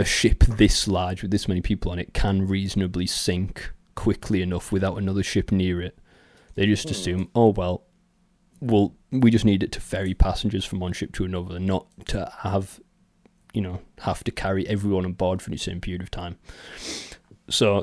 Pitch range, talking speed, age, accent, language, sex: 90-120 Hz, 195 wpm, 20-39, British, English, male